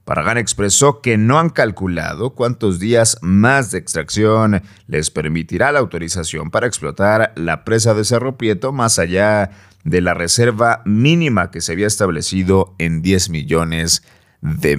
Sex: male